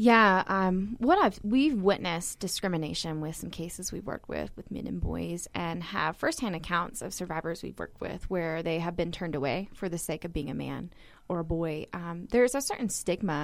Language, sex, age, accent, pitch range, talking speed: English, female, 20-39, American, 170-210 Hz, 210 wpm